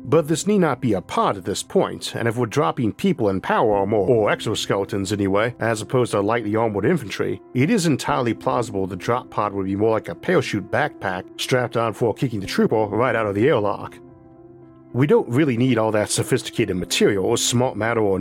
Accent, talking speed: American, 210 wpm